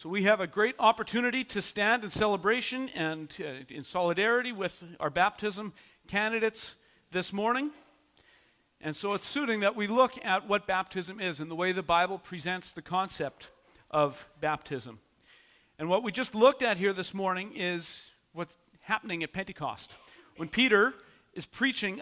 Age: 50-69